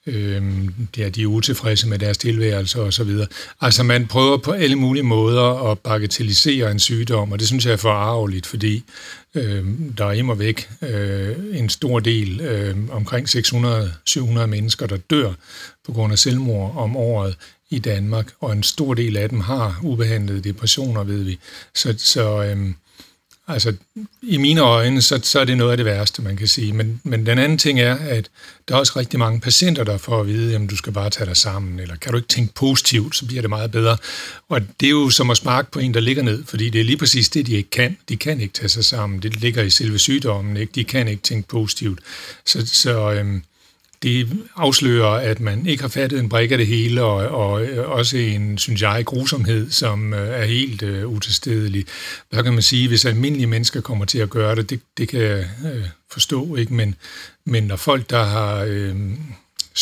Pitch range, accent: 105-125 Hz, native